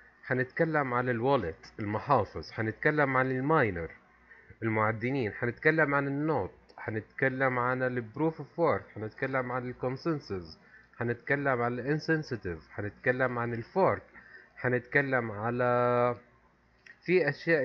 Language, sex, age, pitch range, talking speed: Arabic, male, 30-49, 100-145 Hz, 105 wpm